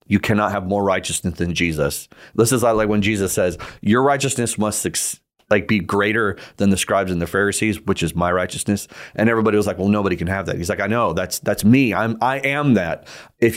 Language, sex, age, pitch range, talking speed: English, male, 30-49, 95-115 Hz, 225 wpm